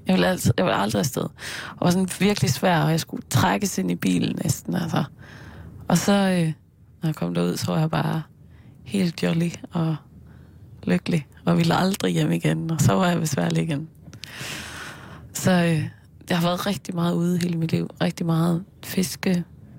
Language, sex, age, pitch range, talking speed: Danish, female, 20-39, 135-180 Hz, 185 wpm